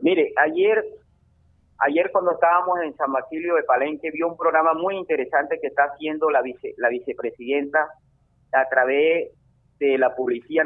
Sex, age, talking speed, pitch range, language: male, 40-59, 150 wpm, 135-165 Hz, Spanish